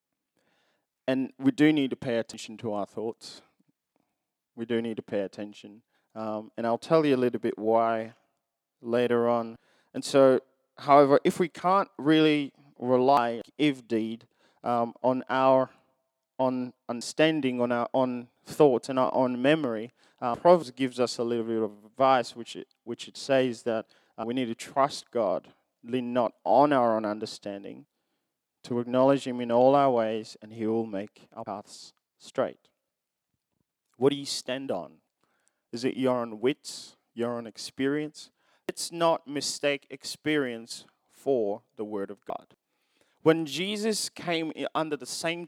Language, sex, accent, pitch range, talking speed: English, male, Australian, 115-150 Hz, 155 wpm